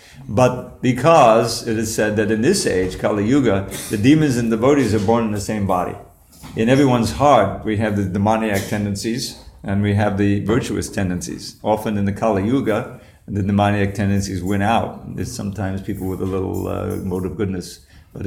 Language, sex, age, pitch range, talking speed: English, male, 50-69, 100-115 Hz, 185 wpm